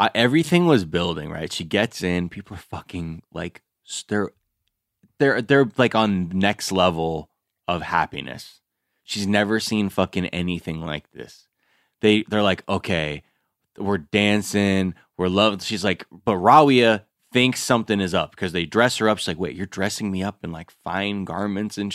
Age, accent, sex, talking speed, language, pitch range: 20-39, American, male, 165 wpm, English, 90-110 Hz